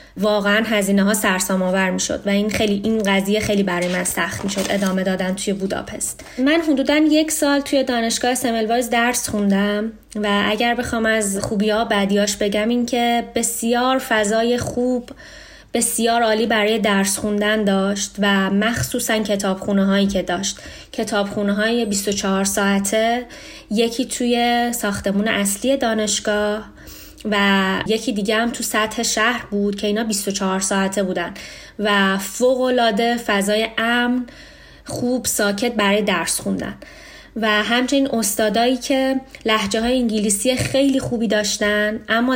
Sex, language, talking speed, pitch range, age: female, Persian, 135 wpm, 205-240 Hz, 20-39